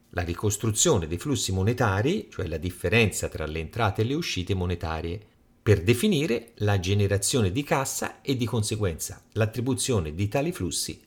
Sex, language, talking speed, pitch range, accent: male, Italian, 150 wpm, 90-125 Hz, native